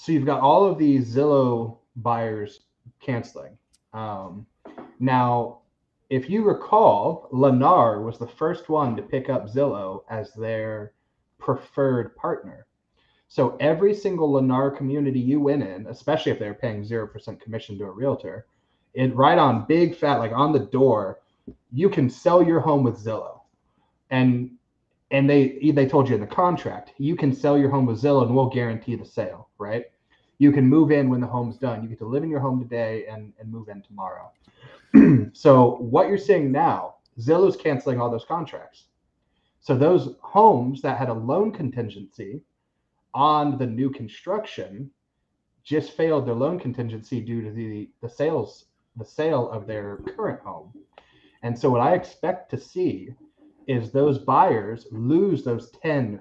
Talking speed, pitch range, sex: 165 wpm, 115-145 Hz, male